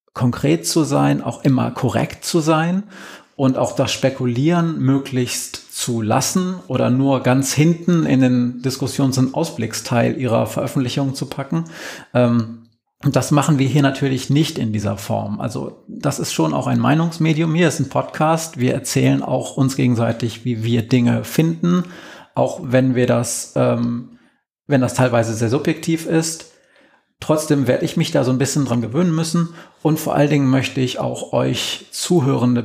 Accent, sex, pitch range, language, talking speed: German, male, 120-155 Hz, German, 165 wpm